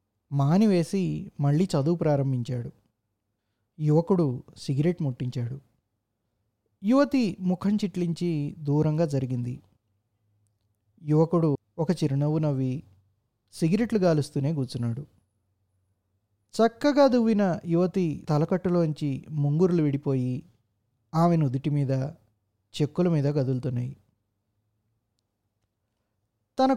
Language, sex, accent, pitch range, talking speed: Telugu, male, native, 115-170 Hz, 75 wpm